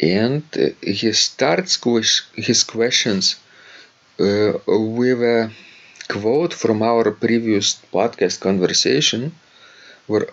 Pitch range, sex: 95-115 Hz, male